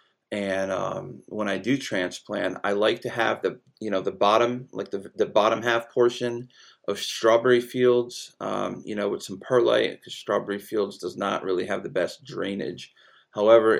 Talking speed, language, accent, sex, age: 180 wpm, English, American, male, 30-49